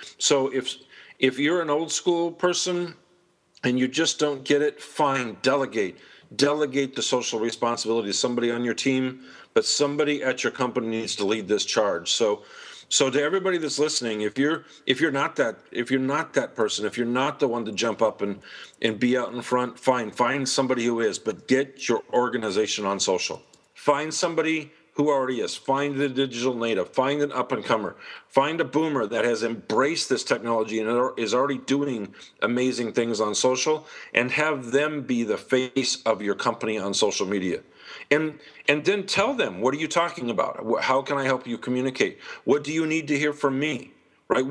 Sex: male